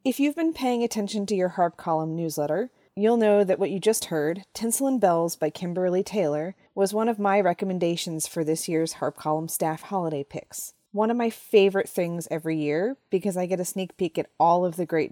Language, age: English, 30-49